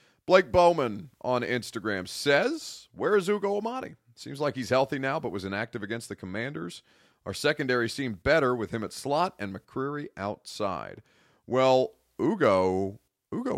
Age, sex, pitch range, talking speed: 40-59, male, 95-125 Hz, 150 wpm